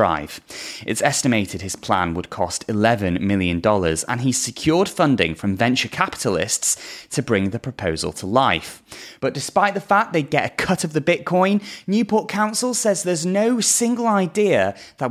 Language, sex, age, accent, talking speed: English, male, 30-49, British, 160 wpm